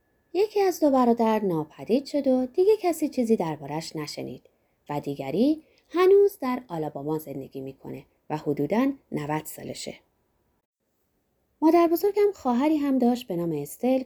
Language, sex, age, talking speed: Persian, female, 20-39, 130 wpm